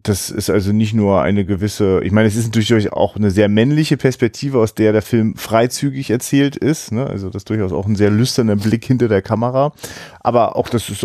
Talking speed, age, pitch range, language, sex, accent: 225 wpm, 30-49, 110-145 Hz, German, male, German